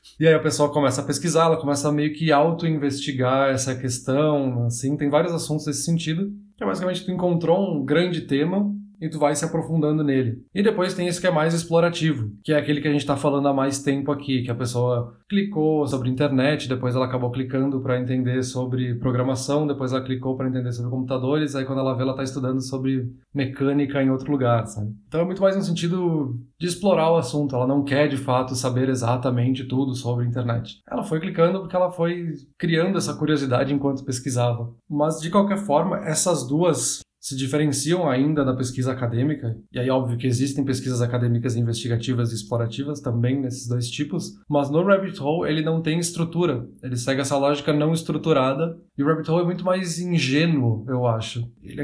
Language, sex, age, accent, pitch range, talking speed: Portuguese, male, 20-39, Brazilian, 130-165 Hz, 195 wpm